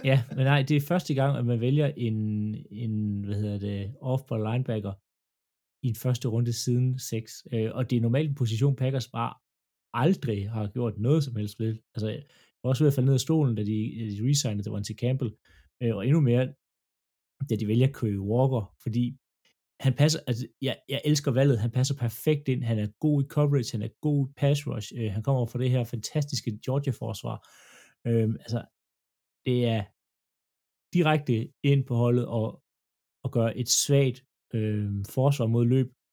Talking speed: 180 wpm